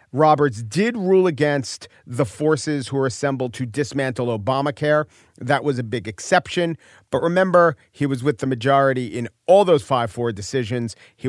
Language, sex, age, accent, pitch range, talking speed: English, male, 40-59, American, 120-150 Hz, 160 wpm